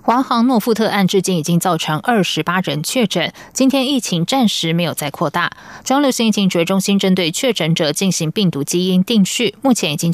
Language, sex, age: Chinese, female, 20-39